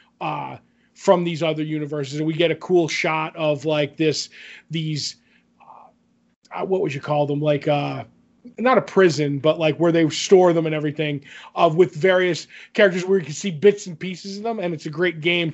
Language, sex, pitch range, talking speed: English, male, 155-195 Hz, 200 wpm